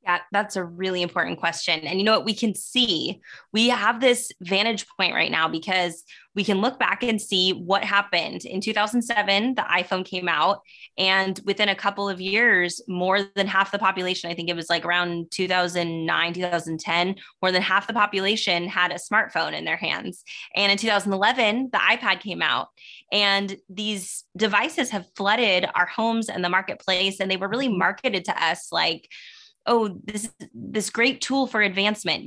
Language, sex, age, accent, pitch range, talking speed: English, female, 20-39, American, 185-230 Hz, 180 wpm